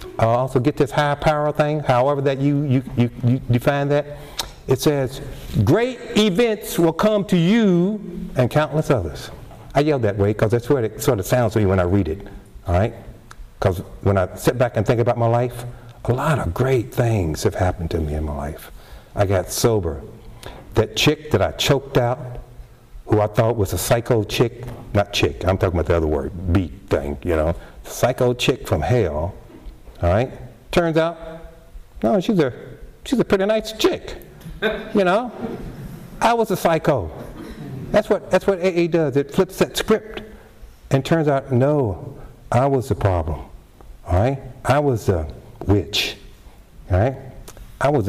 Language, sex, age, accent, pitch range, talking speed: English, male, 60-79, American, 105-150 Hz, 180 wpm